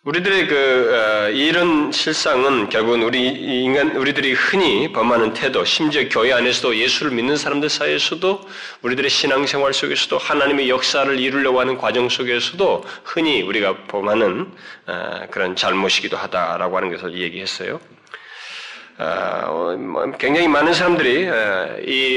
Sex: male